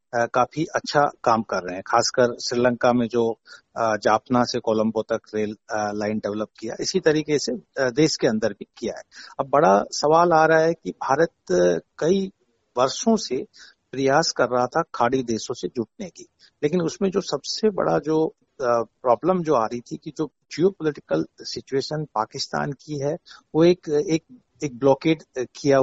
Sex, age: male, 60-79